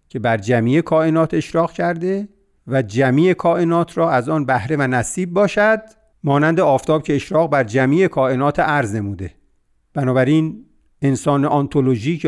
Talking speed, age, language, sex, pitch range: 135 wpm, 50-69, Persian, male, 120-155 Hz